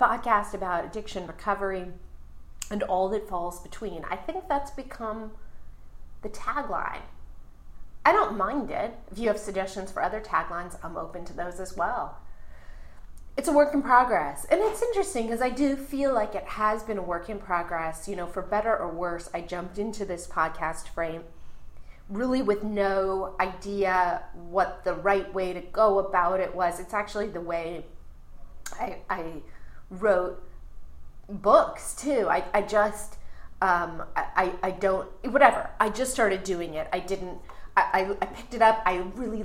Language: English